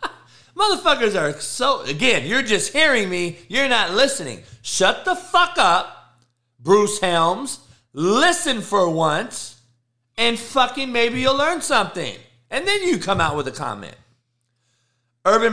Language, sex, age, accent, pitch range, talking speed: English, male, 40-59, American, 120-180 Hz, 135 wpm